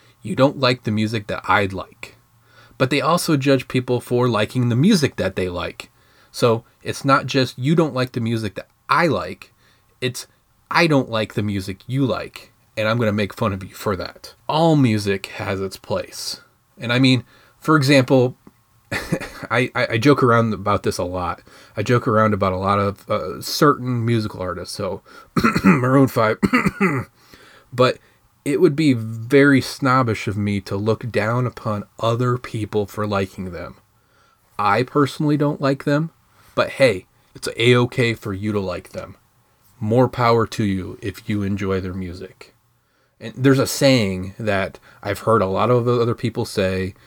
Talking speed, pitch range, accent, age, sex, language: 175 wpm, 105-130 Hz, American, 30-49, male, English